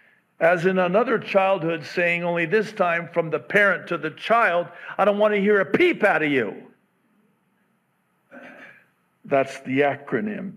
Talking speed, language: 155 wpm, English